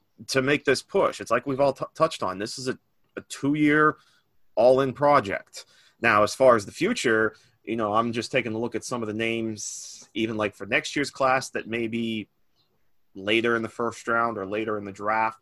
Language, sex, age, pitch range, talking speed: English, male, 30-49, 100-115 Hz, 210 wpm